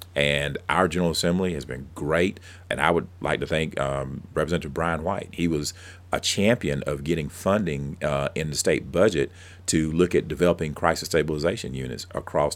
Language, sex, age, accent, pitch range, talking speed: English, male, 40-59, American, 75-90 Hz, 175 wpm